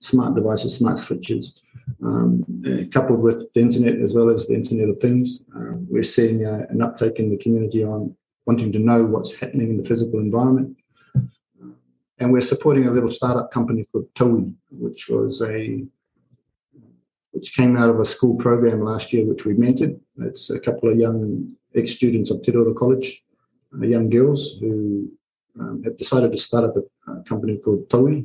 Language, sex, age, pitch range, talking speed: English, male, 50-69, 110-130 Hz, 185 wpm